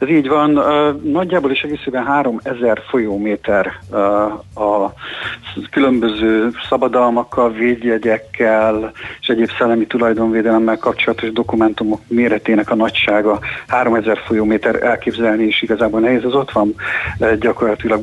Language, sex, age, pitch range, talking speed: Hungarian, male, 50-69, 110-125 Hz, 110 wpm